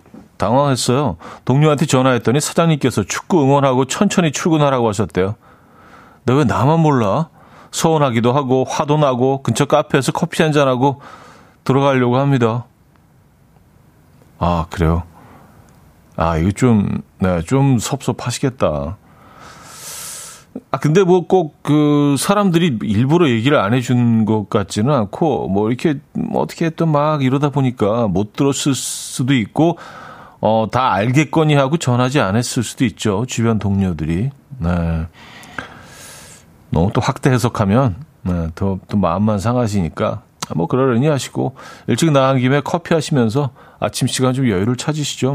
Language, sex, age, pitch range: Korean, male, 40-59, 105-145 Hz